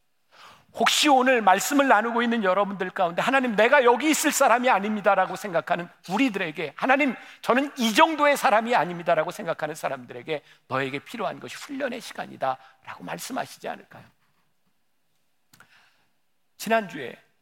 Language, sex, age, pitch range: Korean, male, 50-69, 155-235 Hz